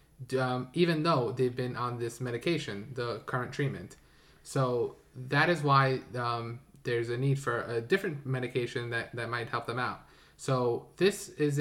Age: 20-39